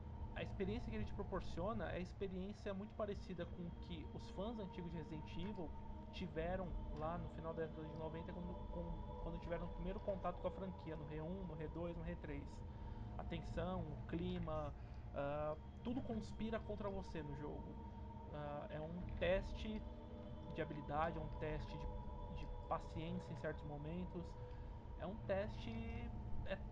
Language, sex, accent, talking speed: Portuguese, male, Brazilian, 155 wpm